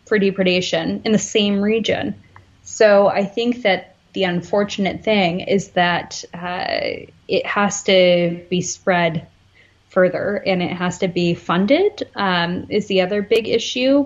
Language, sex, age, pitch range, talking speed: English, female, 20-39, 170-205 Hz, 140 wpm